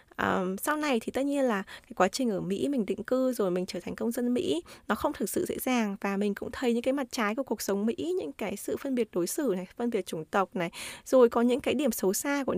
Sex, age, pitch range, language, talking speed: female, 20-39, 195-260 Hz, Vietnamese, 285 wpm